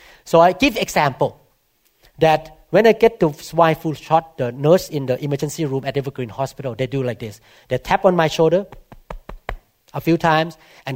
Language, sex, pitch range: English, male, 150-210 Hz